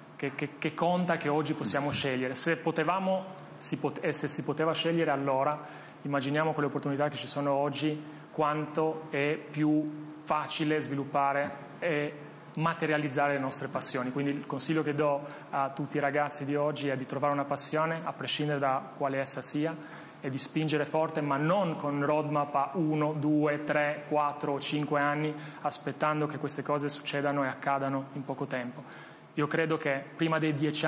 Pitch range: 140-160 Hz